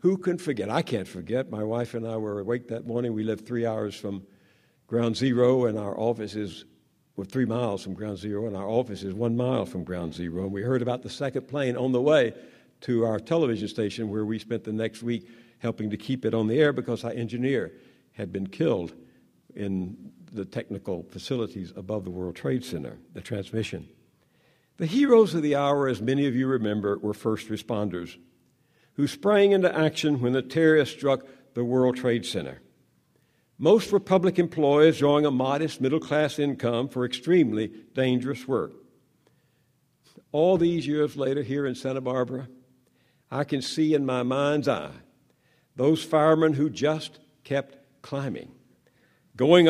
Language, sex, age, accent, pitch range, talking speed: English, male, 60-79, American, 110-145 Hz, 175 wpm